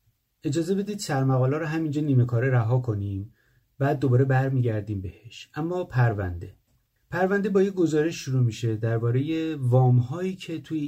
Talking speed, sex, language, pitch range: 150 wpm, male, Persian, 120-150 Hz